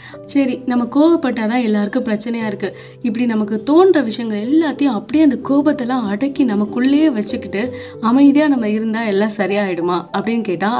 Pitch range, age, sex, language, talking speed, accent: 195-255 Hz, 20-39, female, Tamil, 140 wpm, native